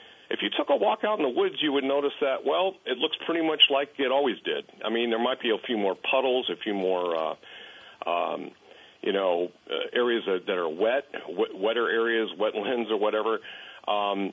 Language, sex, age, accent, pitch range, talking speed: English, male, 50-69, American, 105-165 Hz, 215 wpm